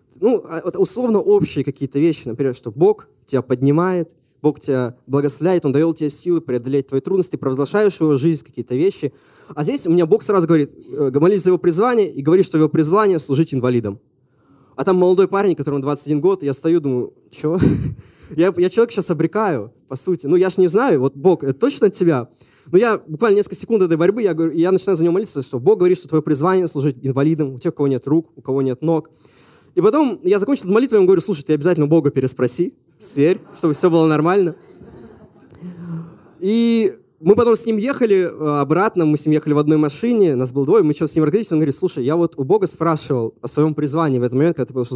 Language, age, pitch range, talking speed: Russian, 20-39, 140-185 Hz, 220 wpm